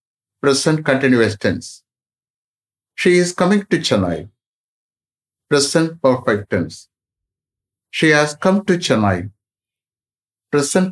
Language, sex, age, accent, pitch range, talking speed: English, male, 60-79, Indian, 100-155 Hz, 95 wpm